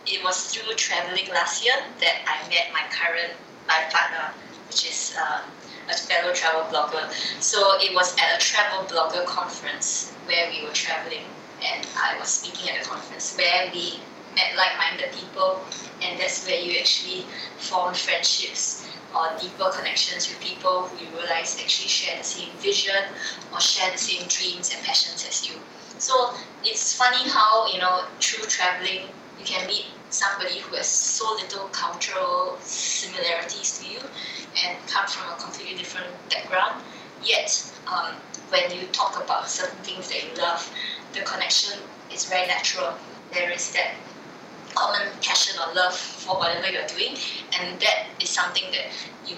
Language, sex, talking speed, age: English, female, 165 wpm, 20-39